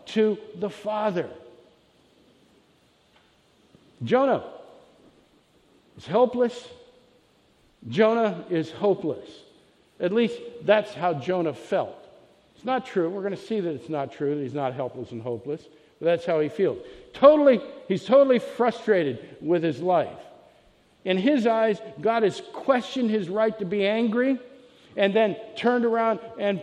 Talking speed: 135 wpm